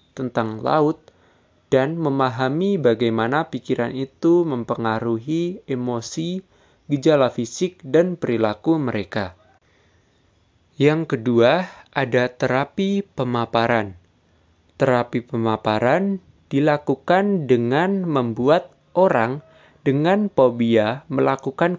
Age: 20-39